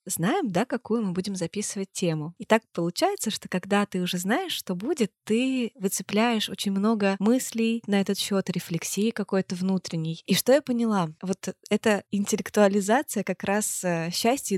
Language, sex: Russian, female